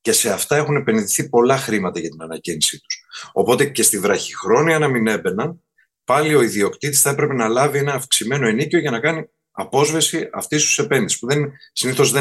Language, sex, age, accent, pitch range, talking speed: Greek, male, 30-49, native, 115-160 Hz, 190 wpm